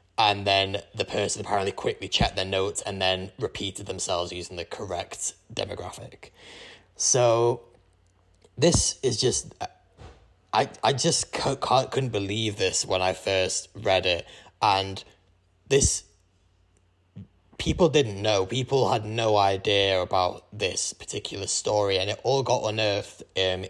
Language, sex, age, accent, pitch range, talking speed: English, male, 20-39, British, 90-100 Hz, 130 wpm